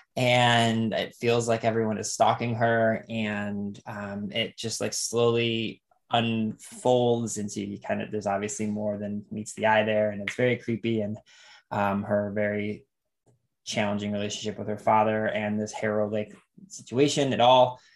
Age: 20-39